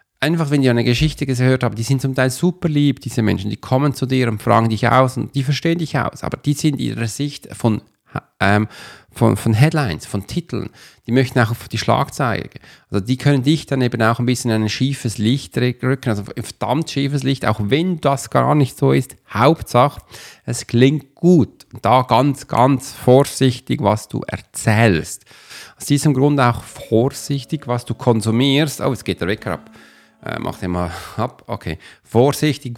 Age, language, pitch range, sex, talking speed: 40-59, German, 105-135 Hz, male, 195 wpm